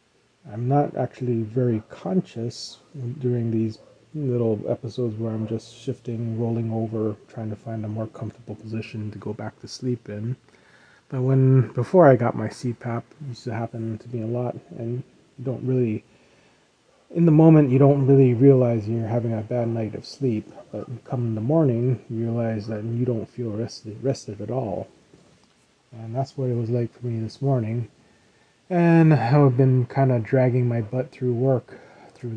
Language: English